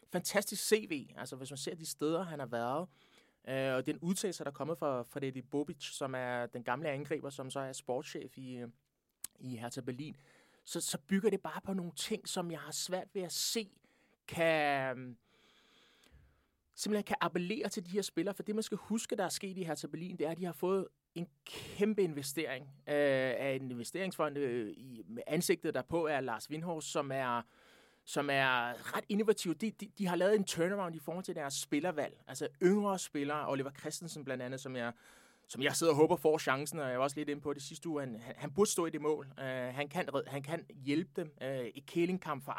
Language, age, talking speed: Danish, 30-49, 215 wpm